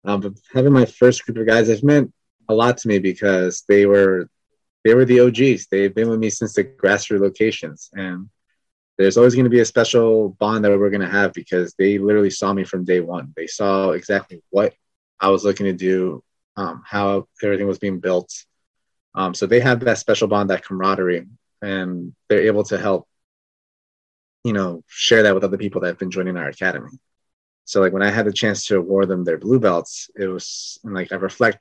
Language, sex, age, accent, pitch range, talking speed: English, male, 20-39, American, 95-110 Hz, 210 wpm